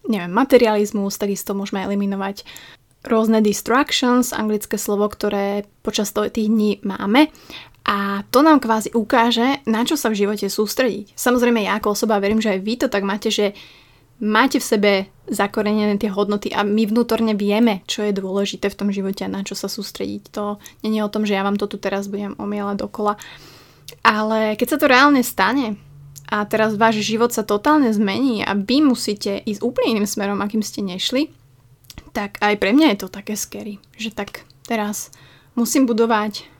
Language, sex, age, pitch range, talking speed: Slovak, female, 20-39, 200-230 Hz, 175 wpm